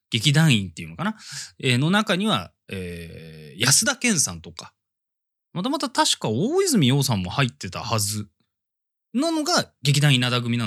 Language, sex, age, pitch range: Japanese, male, 20-39, 100-150 Hz